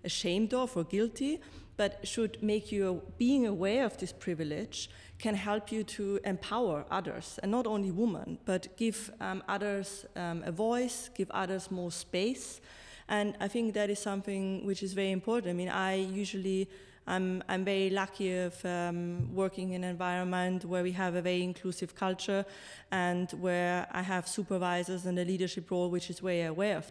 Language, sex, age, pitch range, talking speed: English, female, 20-39, 175-195 Hz, 175 wpm